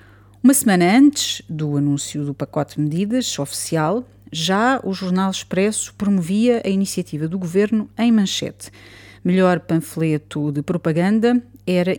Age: 30-49